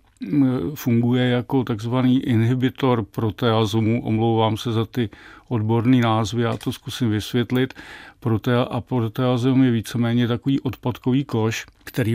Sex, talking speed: male, 120 wpm